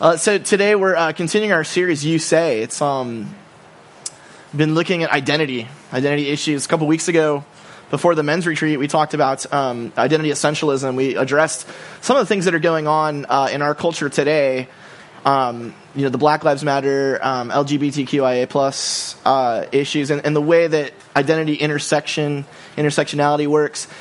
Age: 20-39